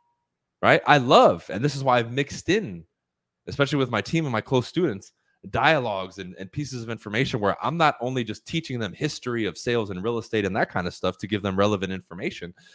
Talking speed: 220 wpm